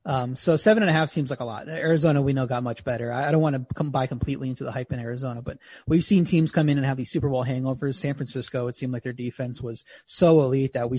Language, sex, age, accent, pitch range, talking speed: English, male, 30-49, American, 125-140 Hz, 290 wpm